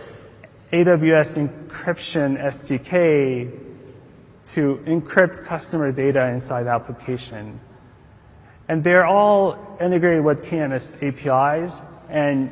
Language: English